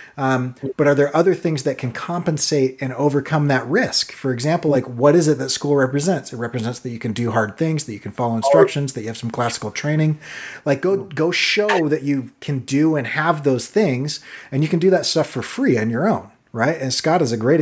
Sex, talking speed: male, 240 wpm